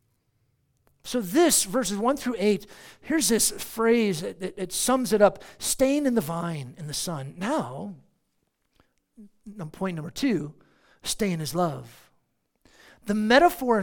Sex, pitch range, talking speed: male, 155-240 Hz, 145 wpm